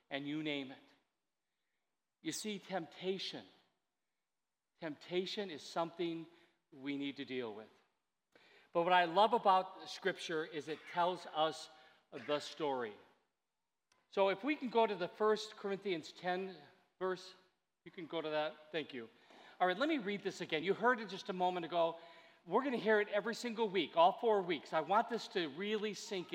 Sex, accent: male, American